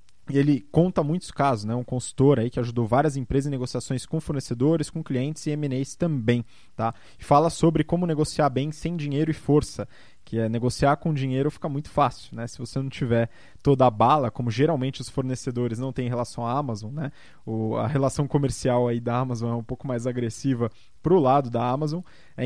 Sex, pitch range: male, 125-165 Hz